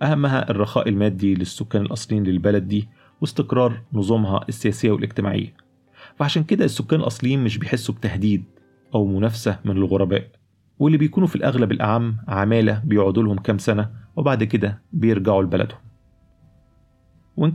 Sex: male